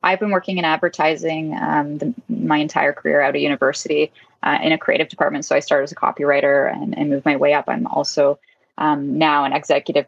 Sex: female